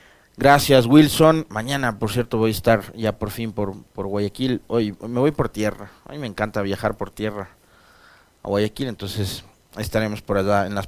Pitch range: 110-135 Hz